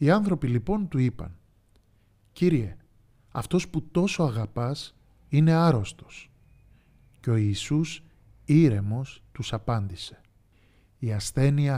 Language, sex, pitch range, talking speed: Greek, male, 105-145 Hz, 100 wpm